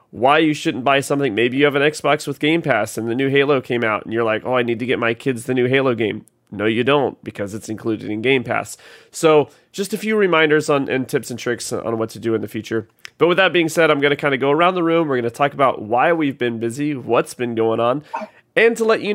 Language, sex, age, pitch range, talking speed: English, male, 30-49, 120-155 Hz, 280 wpm